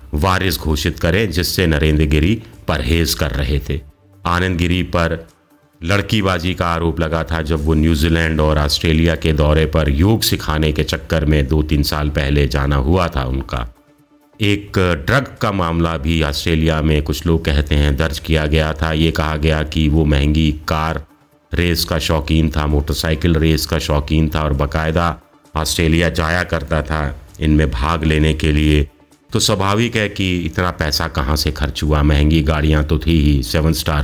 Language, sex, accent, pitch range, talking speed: Hindi, male, native, 75-90 Hz, 175 wpm